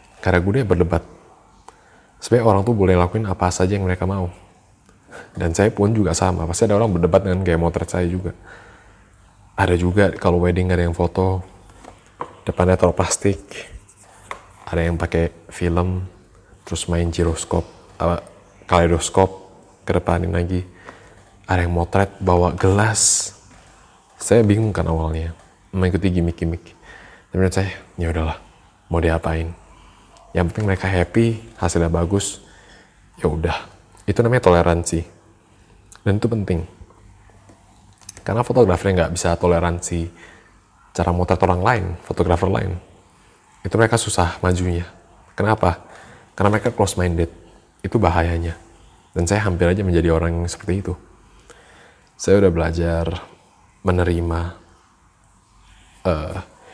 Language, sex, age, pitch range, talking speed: Indonesian, male, 20-39, 85-100 Hz, 120 wpm